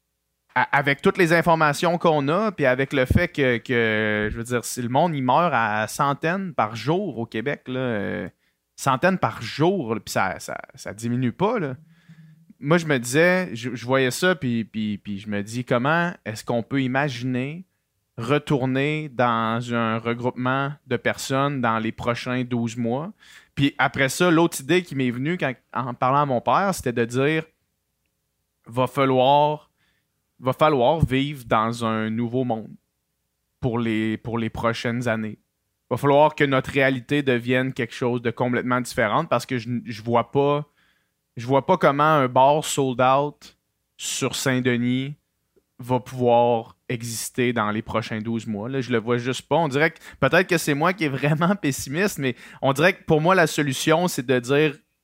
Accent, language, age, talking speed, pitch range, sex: Canadian, French, 30-49, 180 wpm, 120-145 Hz, male